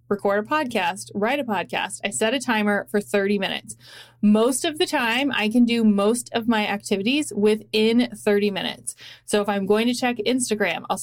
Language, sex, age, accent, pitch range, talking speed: English, female, 30-49, American, 200-235 Hz, 190 wpm